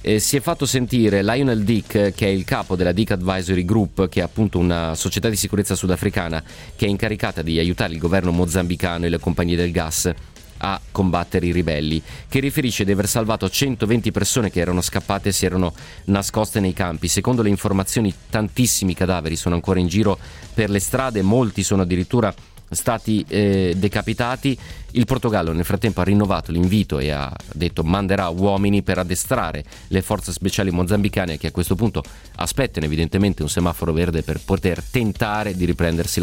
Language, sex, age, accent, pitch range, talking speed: Italian, male, 30-49, native, 85-105 Hz, 175 wpm